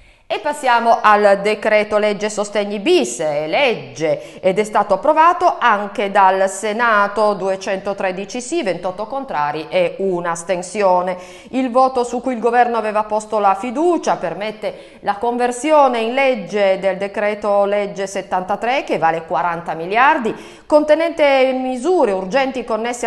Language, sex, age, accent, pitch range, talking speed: Italian, female, 40-59, native, 195-260 Hz, 130 wpm